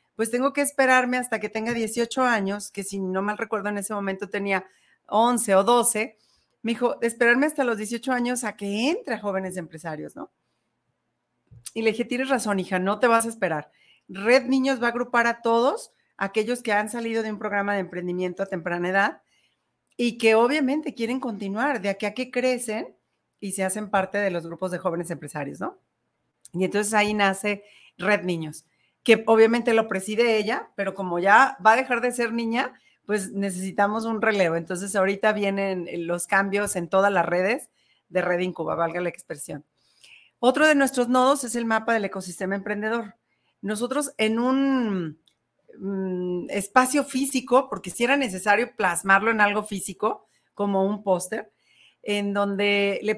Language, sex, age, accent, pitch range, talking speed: Spanish, female, 40-59, Mexican, 190-235 Hz, 175 wpm